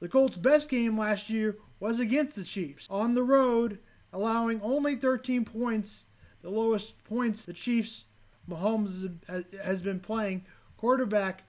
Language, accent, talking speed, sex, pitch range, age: English, American, 140 wpm, male, 190-240 Hz, 20-39